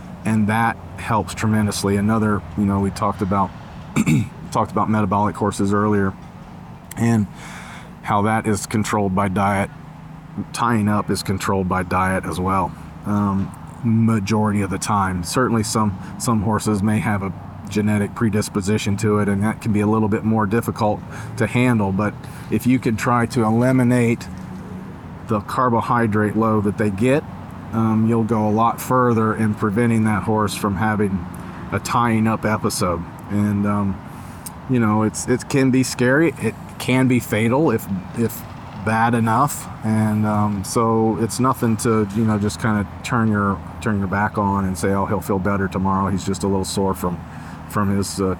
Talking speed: 165 wpm